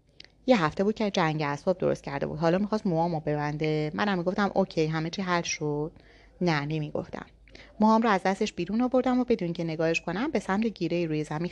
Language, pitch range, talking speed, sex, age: Persian, 165-230 Hz, 200 wpm, female, 30-49